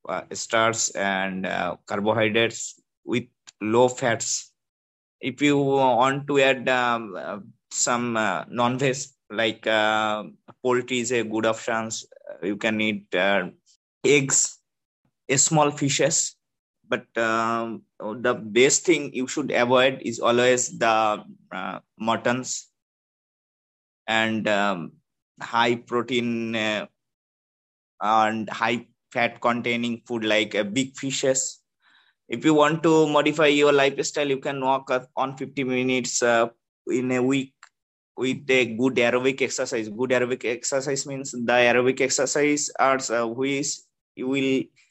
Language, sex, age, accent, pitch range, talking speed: English, male, 20-39, Indian, 115-135 Hz, 130 wpm